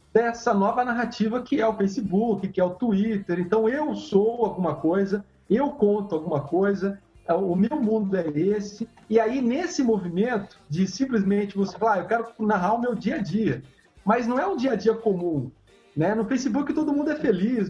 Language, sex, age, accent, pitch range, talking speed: Portuguese, male, 40-59, Brazilian, 190-230 Hz, 195 wpm